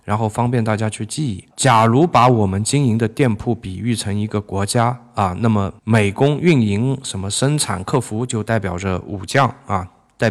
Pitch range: 105-125 Hz